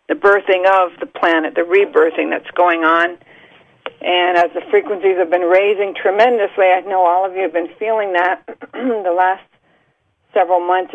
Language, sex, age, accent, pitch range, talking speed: English, female, 50-69, American, 175-200 Hz, 170 wpm